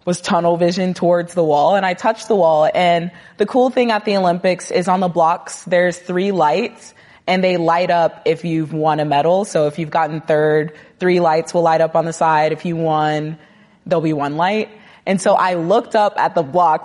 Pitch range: 160-215 Hz